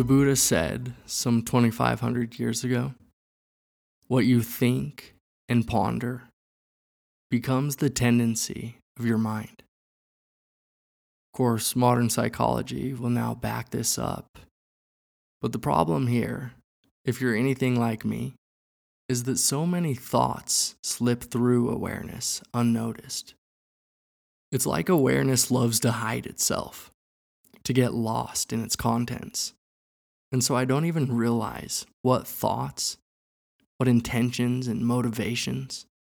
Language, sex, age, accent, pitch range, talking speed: English, male, 20-39, American, 115-130 Hz, 115 wpm